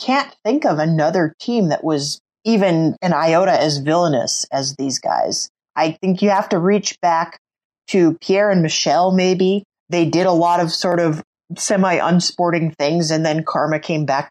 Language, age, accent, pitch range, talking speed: English, 30-49, American, 155-195 Hz, 170 wpm